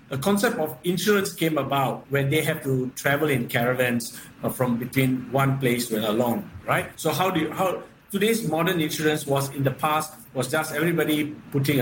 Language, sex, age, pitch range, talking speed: English, male, 50-69, 135-165 Hz, 195 wpm